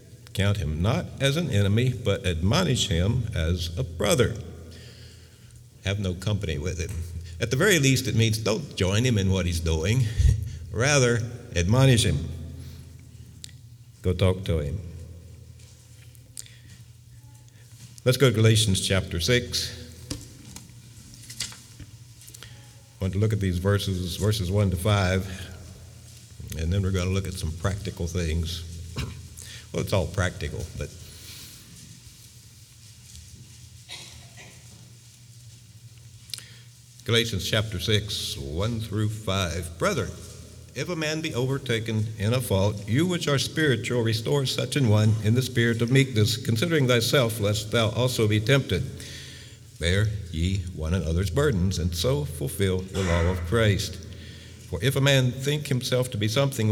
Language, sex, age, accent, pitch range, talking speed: English, male, 60-79, American, 95-120 Hz, 130 wpm